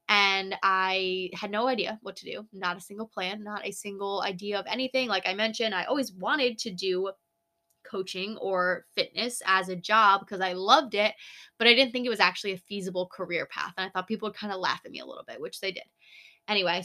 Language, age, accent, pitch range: English, 10-29, American, 185-220 Hz